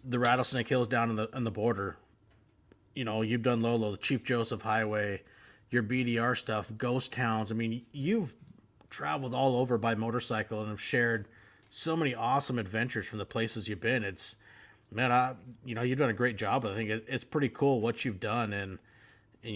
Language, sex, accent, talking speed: English, male, American, 195 wpm